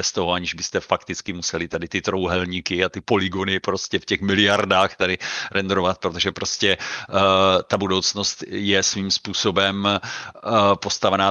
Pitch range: 90-100 Hz